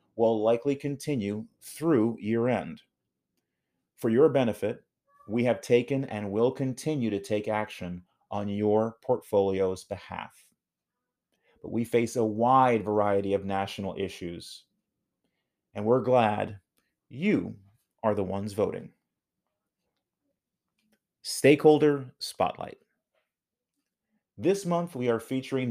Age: 30-49